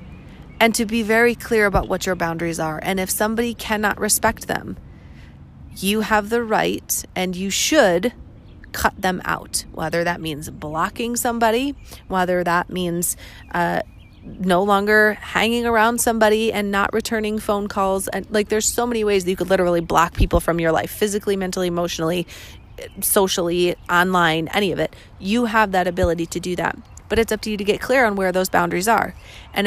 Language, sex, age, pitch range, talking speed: English, female, 30-49, 180-220 Hz, 180 wpm